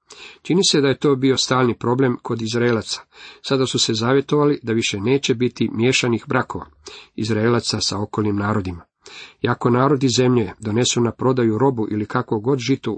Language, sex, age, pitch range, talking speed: Croatian, male, 40-59, 110-130 Hz, 160 wpm